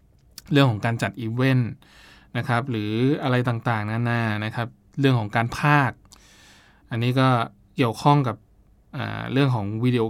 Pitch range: 110-130 Hz